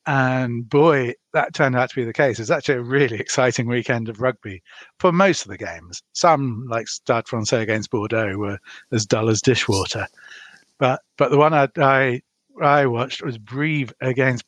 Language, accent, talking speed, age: English, British, 180 wpm, 50-69